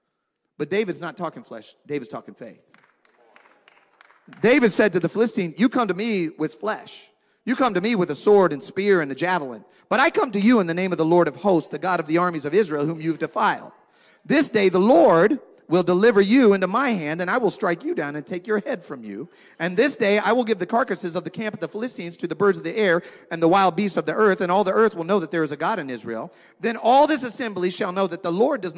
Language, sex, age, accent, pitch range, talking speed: English, male, 40-59, American, 160-210 Hz, 265 wpm